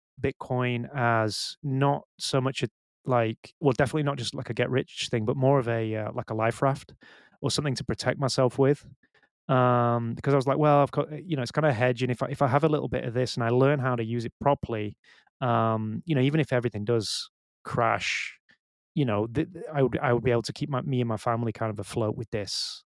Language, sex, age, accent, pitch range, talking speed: English, male, 20-39, British, 115-140 Hz, 245 wpm